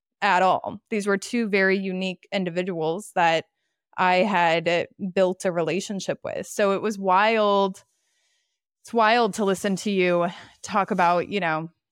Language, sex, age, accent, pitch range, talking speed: English, female, 20-39, American, 175-215 Hz, 145 wpm